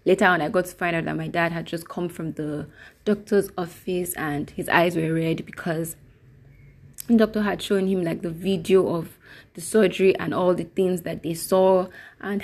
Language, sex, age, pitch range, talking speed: English, female, 20-39, 165-190 Hz, 205 wpm